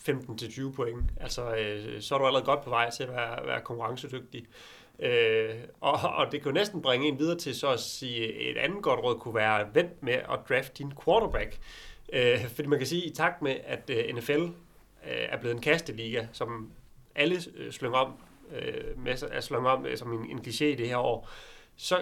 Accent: native